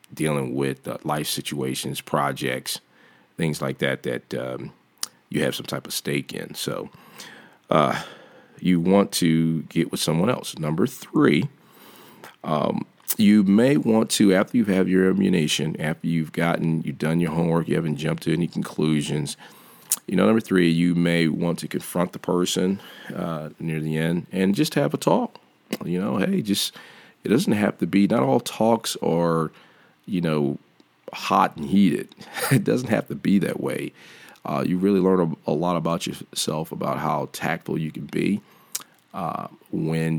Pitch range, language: 80-90 Hz, English